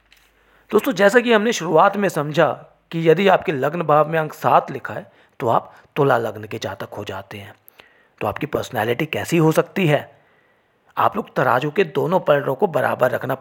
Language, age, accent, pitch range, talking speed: English, 40-59, Indian, 120-185 Hz, 190 wpm